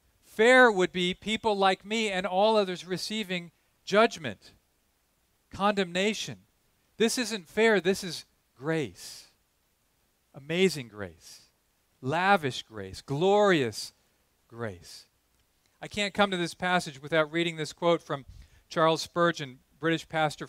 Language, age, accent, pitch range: English, 40-59, American, 140-215 Hz